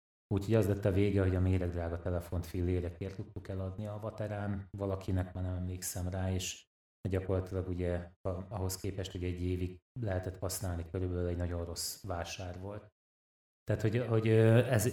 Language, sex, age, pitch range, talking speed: Hungarian, male, 30-49, 90-100 Hz, 160 wpm